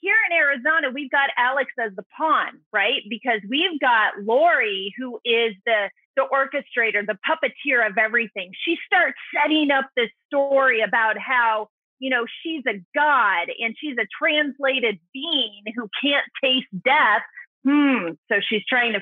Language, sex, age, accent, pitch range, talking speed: English, female, 30-49, American, 220-305 Hz, 160 wpm